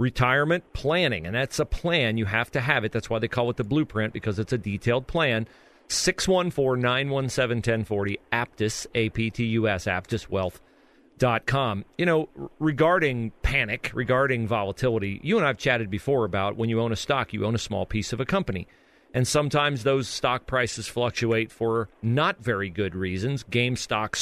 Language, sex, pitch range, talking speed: English, male, 110-140 Hz, 165 wpm